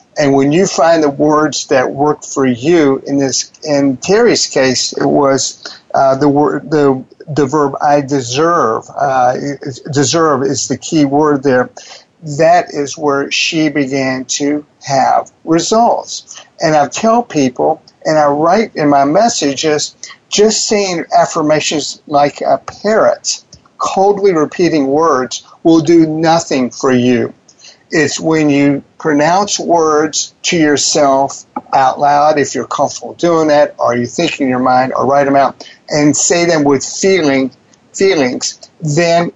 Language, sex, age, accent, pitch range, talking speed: English, male, 50-69, American, 140-165 Hz, 145 wpm